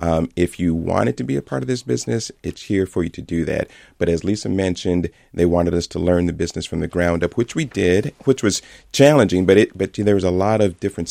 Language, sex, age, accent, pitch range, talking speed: English, male, 40-59, American, 80-95 Hz, 270 wpm